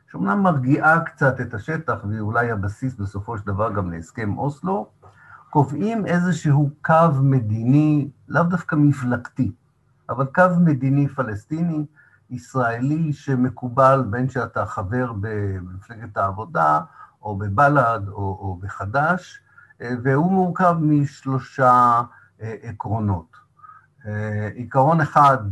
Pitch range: 105-140 Hz